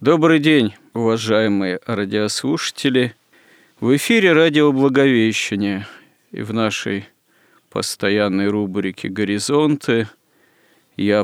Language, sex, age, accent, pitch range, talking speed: Russian, male, 40-59, native, 100-115 Hz, 75 wpm